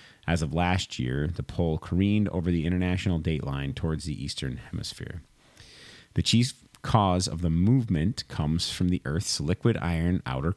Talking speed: 160 wpm